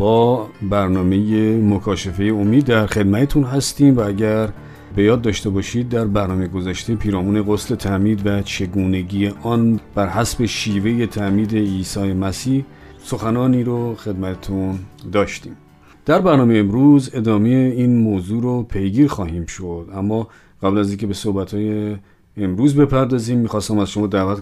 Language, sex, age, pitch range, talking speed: Persian, male, 40-59, 95-125 Hz, 135 wpm